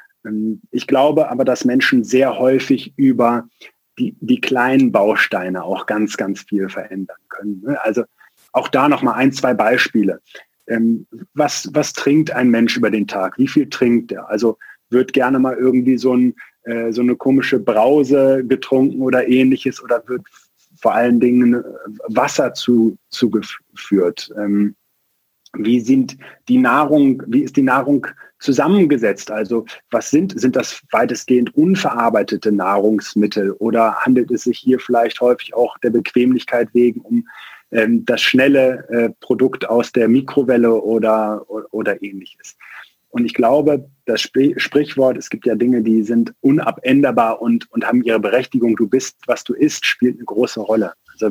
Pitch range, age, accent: 115-135 Hz, 30-49, German